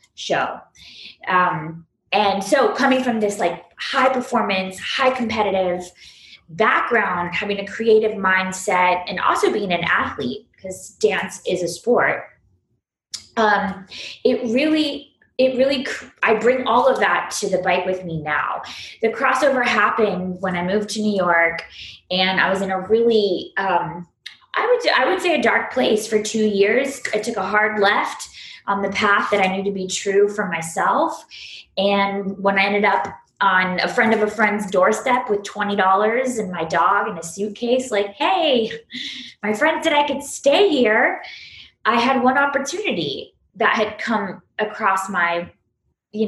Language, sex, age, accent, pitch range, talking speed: English, female, 20-39, American, 185-235 Hz, 165 wpm